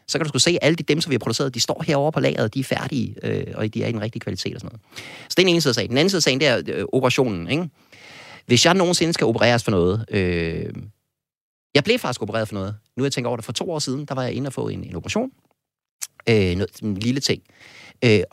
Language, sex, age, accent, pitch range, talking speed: Danish, male, 30-49, native, 110-140 Hz, 285 wpm